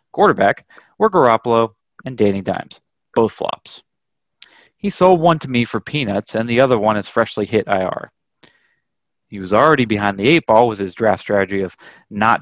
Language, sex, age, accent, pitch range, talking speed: English, male, 30-49, American, 100-135 Hz, 175 wpm